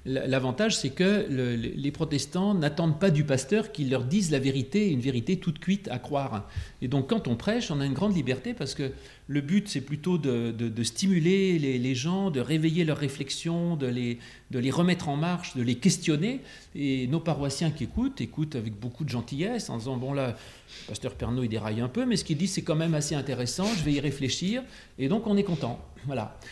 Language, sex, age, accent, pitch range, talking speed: French, male, 40-59, French, 125-175 Hz, 220 wpm